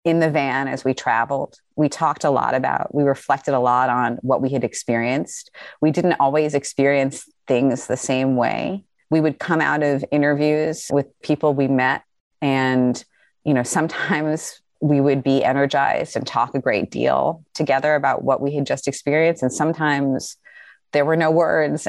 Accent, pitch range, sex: American, 130-150 Hz, female